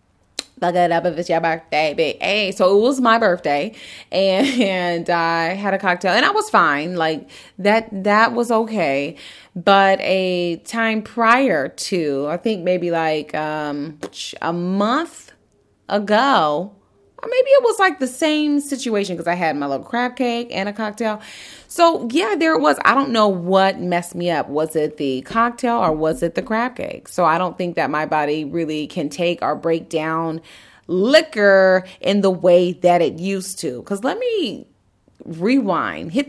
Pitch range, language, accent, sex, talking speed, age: 160-225 Hz, English, American, female, 175 wpm, 30-49